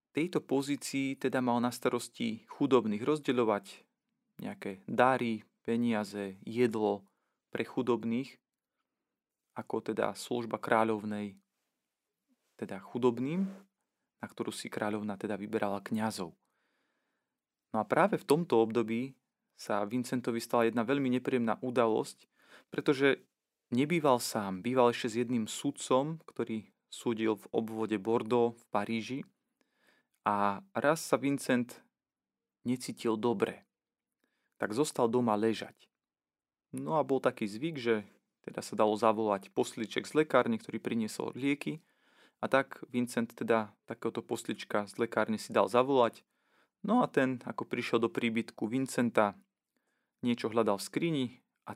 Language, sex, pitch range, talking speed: Slovak, male, 110-135 Hz, 120 wpm